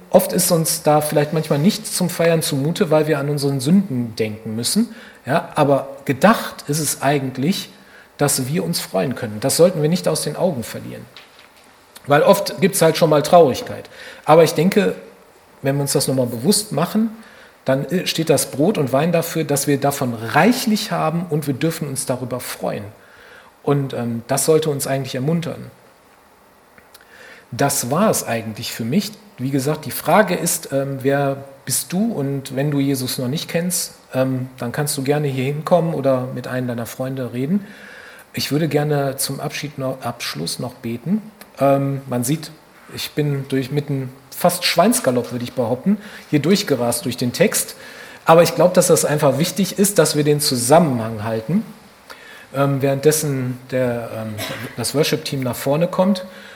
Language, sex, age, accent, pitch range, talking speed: German, male, 40-59, German, 130-170 Hz, 170 wpm